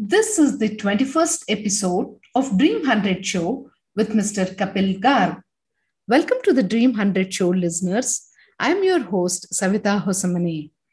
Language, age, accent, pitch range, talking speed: English, 50-69, Indian, 190-285 Hz, 145 wpm